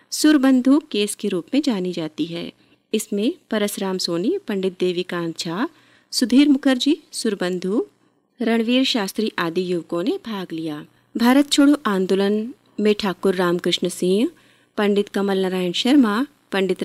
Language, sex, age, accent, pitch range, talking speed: Hindi, female, 30-49, native, 185-255 Hz, 130 wpm